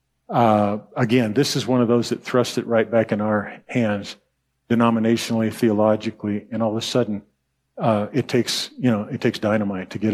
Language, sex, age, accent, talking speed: English, male, 50-69, American, 190 wpm